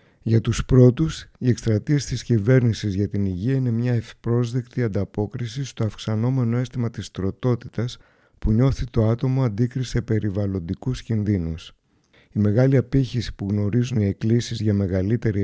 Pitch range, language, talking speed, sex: 100-125 Hz, Greek, 135 wpm, male